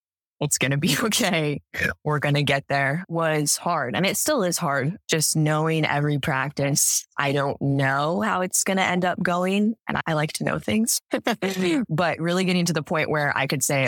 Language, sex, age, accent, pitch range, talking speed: English, female, 20-39, American, 140-170 Hz, 205 wpm